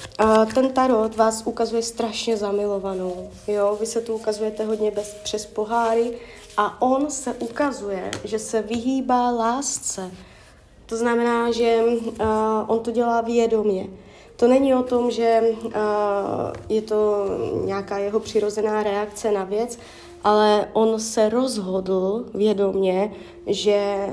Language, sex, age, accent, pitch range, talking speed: Czech, female, 20-39, native, 200-230 Hz, 115 wpm